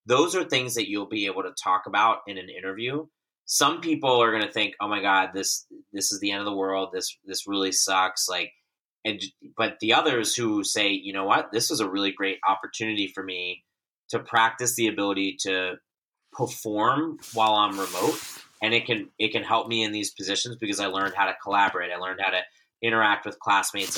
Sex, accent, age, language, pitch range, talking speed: male, American, 30-49, English, 95-115 Hz, 210 wpm